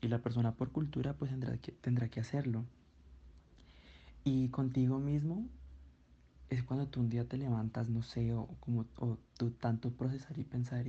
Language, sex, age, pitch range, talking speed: Spanish, male, 20-39, 115-135 Hz, 170 wpm